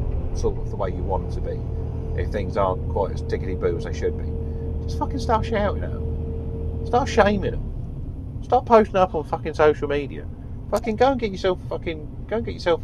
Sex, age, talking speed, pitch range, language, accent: male, 40-59, 205 wpm, 90-120 Hz, English, British